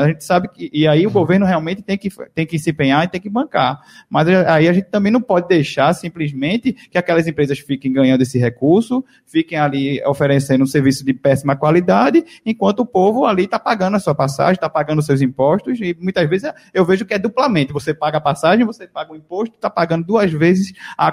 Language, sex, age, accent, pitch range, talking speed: Portuguese, male, 20-39, Brazilian, 145-180 Hz, 220 wpm